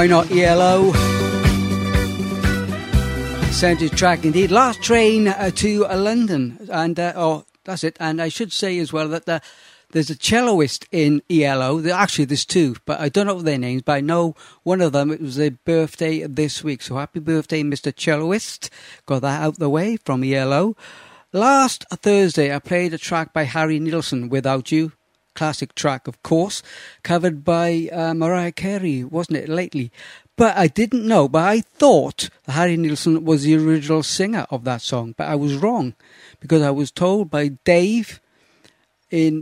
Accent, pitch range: British, 145-180 Hz